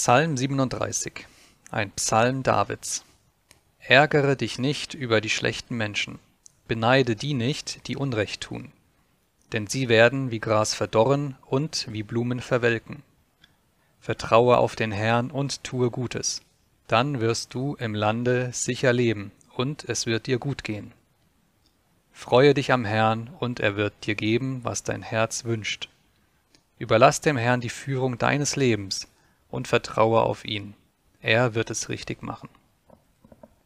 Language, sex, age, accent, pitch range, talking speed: German, male, 30-49, German, 110-130 Hz, 135 wpm